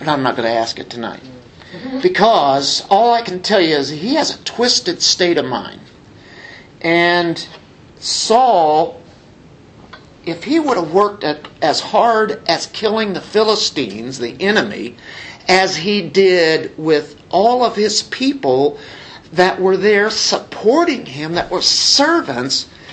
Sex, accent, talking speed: male, American, 140 wpm